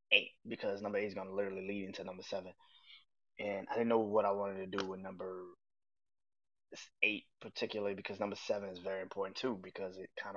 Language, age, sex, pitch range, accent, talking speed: English, 20-39, male, 95-160 Hz, American, 205 wpm